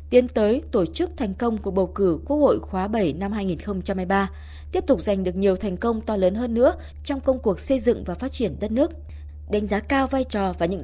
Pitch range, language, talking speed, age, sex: 190-250 Hz, Vietnamese, 240 wpm, 20-39, female